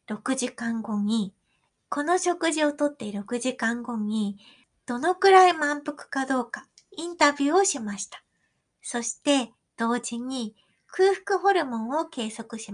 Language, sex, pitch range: Japanese, female, 220-305 Hz